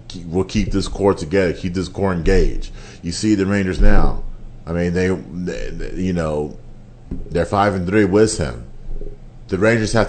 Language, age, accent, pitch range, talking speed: English, 30-49, American, 85-105 Hz, 180 wpm